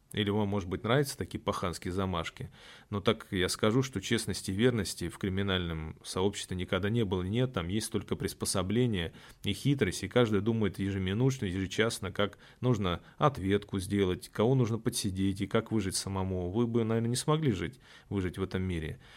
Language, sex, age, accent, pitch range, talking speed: Russian, male, 20-39, native, 95-125 Hz, 170 wpm